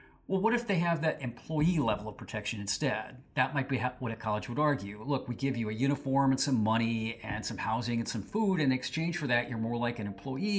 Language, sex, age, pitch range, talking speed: English, male, 40-59, 110-140 Hz, 245 wpm